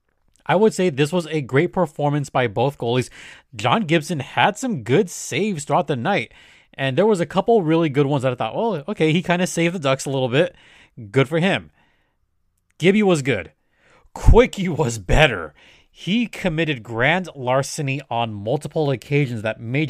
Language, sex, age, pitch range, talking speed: English, male, 30-49, 130-180 Hz, 180 wpm